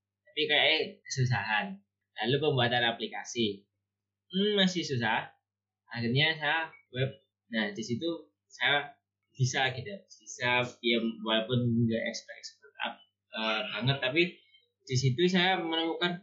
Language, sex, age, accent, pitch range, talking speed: Indonesian, male, 20-39, native, 115-155 Hz, 120 wpm